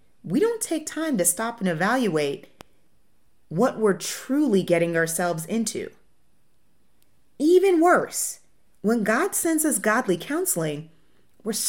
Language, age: English, 30-49